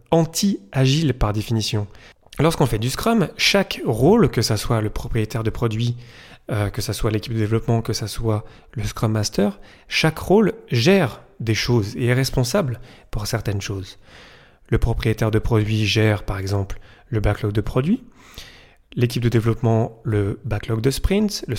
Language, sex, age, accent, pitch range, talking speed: French, male, 30-49, French, 110-130 Hz, 165 wpm